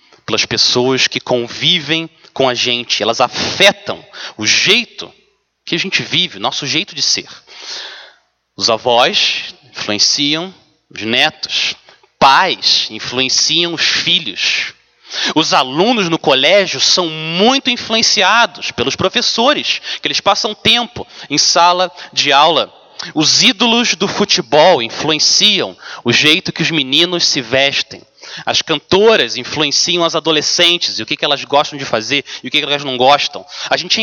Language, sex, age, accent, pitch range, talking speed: Portuguese, male, 30-49, Brazilian, 140-190 Hz, 145 wpm